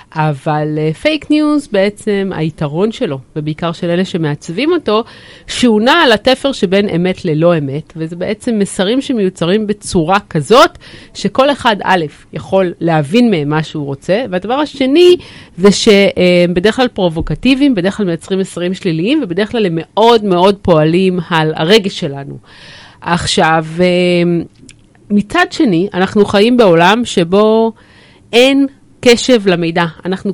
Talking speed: 135 wpm